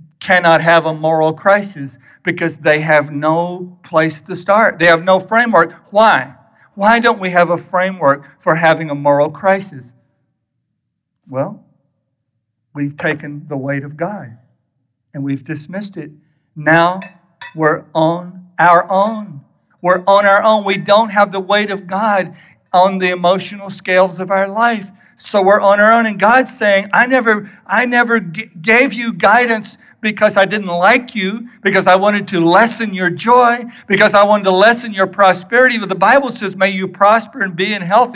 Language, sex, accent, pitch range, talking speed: English, male, American, 170-225 Hz, 170 wpm